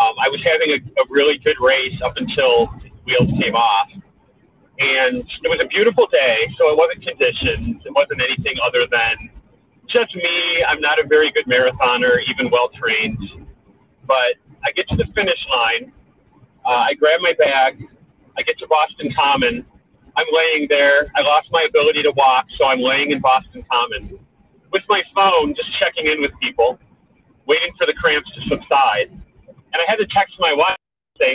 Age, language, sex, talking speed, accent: 30-49, English, male, 180 wpm, American